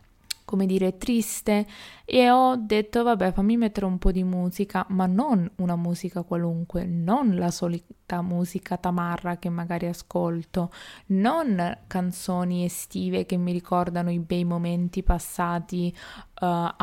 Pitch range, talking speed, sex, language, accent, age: 175-205 Hz, 130 wpm, female, Italian, native, 20-39